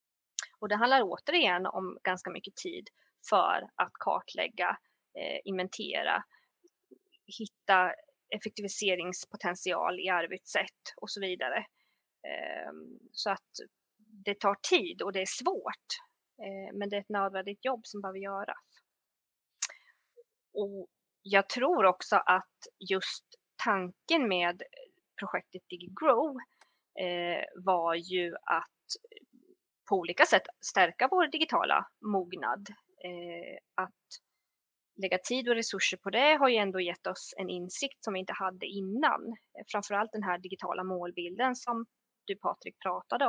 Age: 20-39